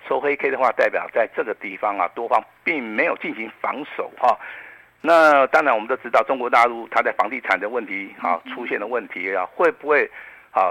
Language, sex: Chinese, male